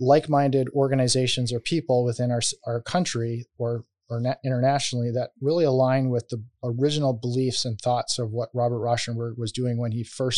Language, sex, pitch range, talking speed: English, male, 120-140 Hz, 170 wpm